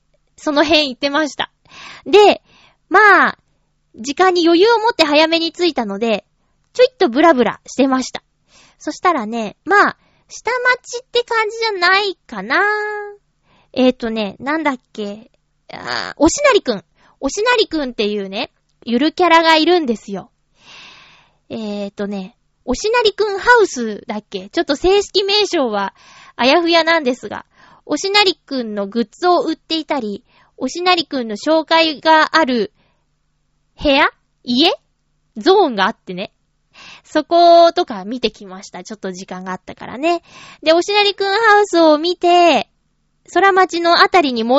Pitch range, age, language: 235-375 Hz, 20-39, Japanese